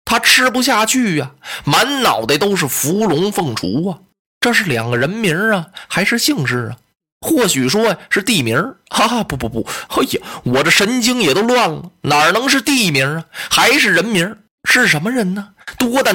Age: 20-39